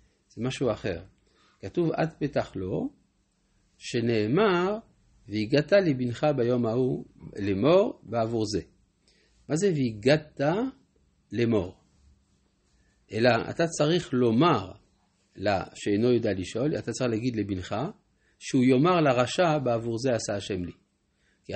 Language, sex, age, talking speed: Hebrew, male, 50-69, 110 wpm